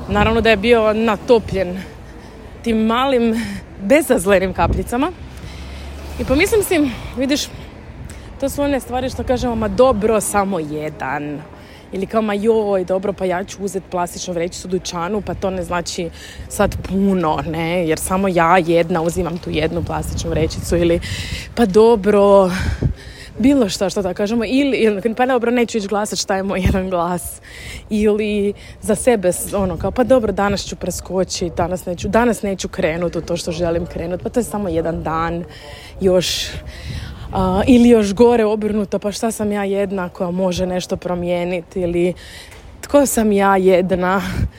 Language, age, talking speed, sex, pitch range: Croatian, 20-39, 155 wpm, female, 175-225 Hz